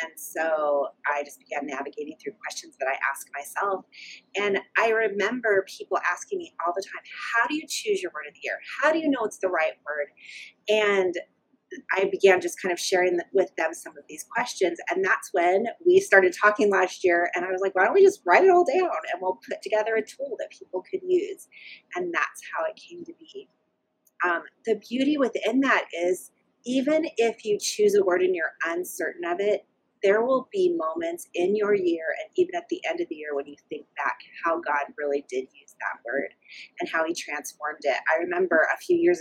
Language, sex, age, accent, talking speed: English, female, 30-49, American, 215 wpm